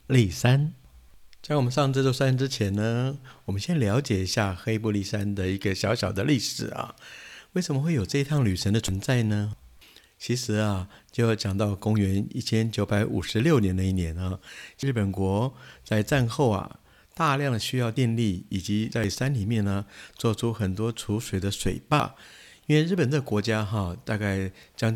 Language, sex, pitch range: Chinese, male, 100-125 Hz